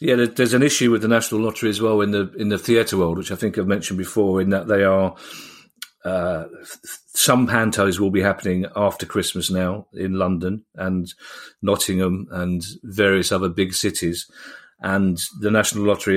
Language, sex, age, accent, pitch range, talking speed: English, male, 40-59, British, 95-125 Hz, 180 wpm